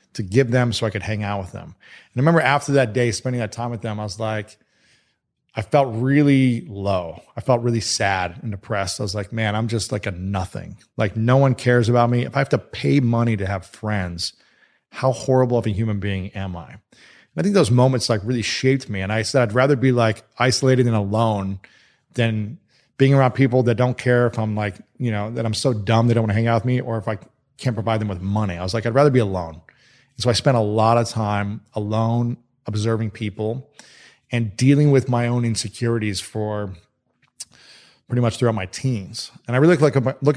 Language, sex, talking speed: English, male, 225 wpm